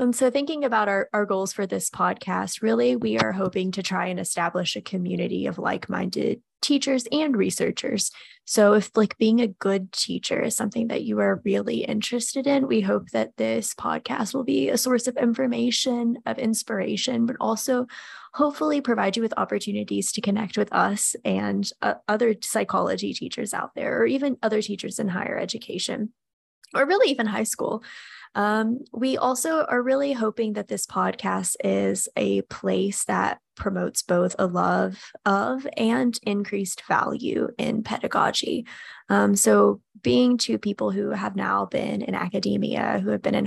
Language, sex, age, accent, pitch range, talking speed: English, female, 10-29, American, 180-250 Hz, 165 wpm